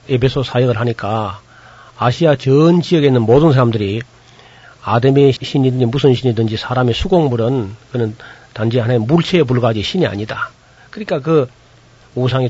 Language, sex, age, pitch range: Korean, male, 40-59, 115-140 Hz